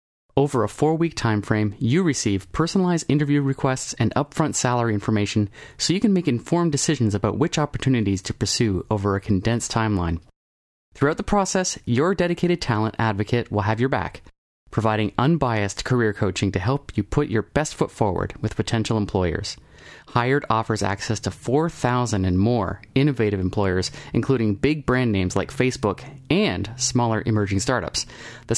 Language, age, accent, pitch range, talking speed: English, 30-49, American, 105-140 Hz, 155 wpm